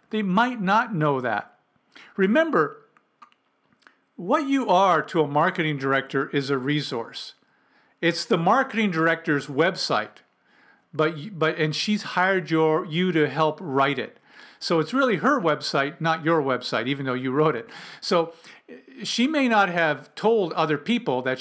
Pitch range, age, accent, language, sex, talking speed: 150-205 Hz, 50-69, American, English, male, 150 wpm